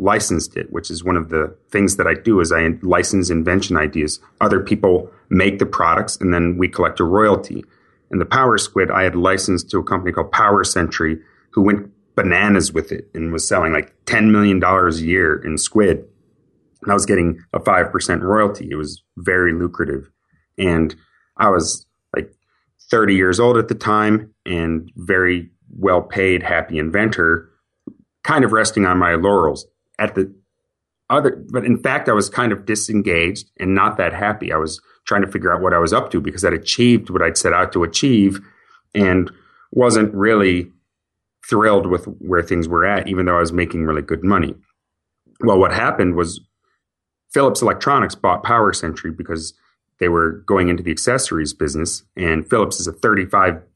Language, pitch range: English, 85-100 Hz